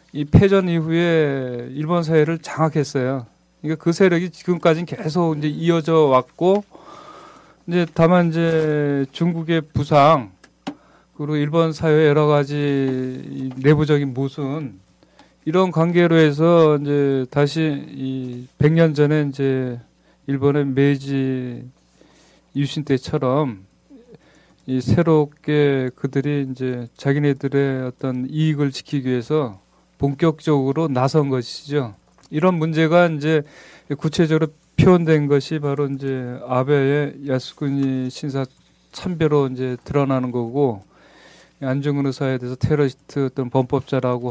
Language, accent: Korean, native